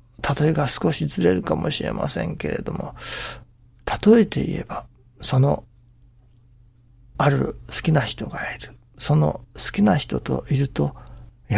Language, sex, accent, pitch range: Japanese, male, native, 120-150 Hz